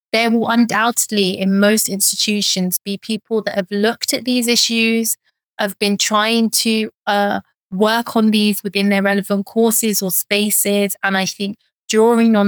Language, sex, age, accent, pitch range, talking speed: English, female, 30-49, British, 195-220 Hz, 160 wpm